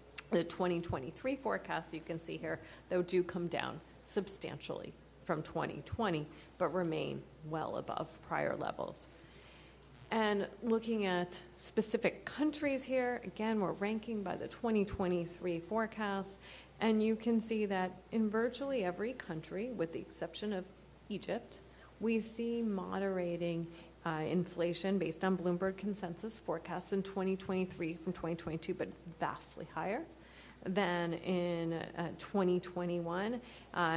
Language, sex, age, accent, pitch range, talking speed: English, female, 40-59, American, 170-210 Hz, 120 wpm